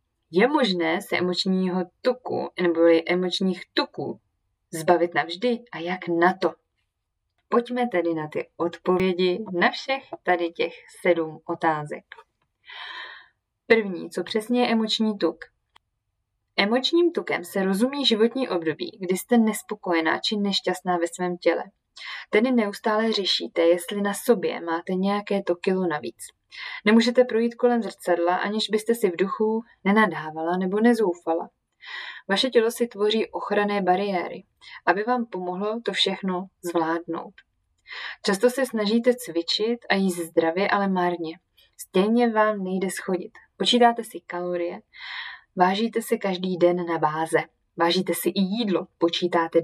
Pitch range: 170-220 Hz